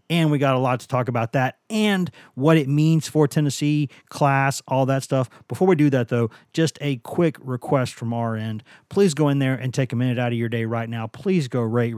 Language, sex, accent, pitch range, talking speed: English, male, American, 120-150 Hz, 240 wpm